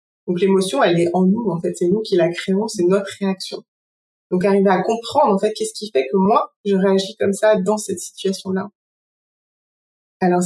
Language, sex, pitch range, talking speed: French, female, 180-210 Hz, 200 wpm